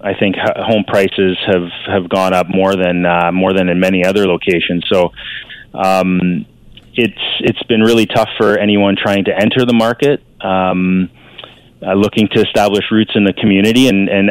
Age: 30-49